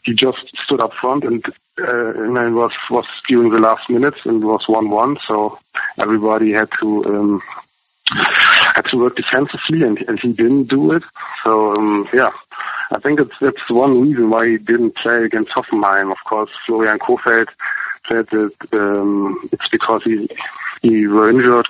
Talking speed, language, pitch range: 170 wpm, English, 110-120 Hz